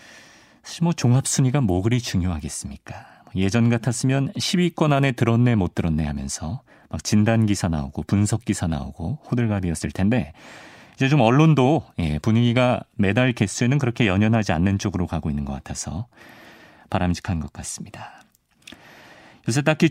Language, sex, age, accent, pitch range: Korean, male, 40-59, native, 95-140 Hz